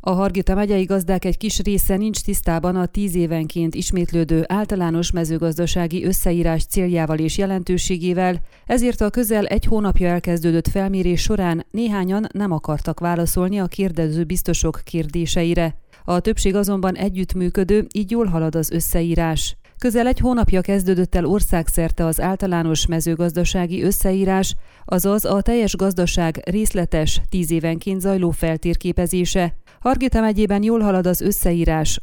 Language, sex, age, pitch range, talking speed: Hungarian, female, 30-49, 170-200 Hz, 125 wpm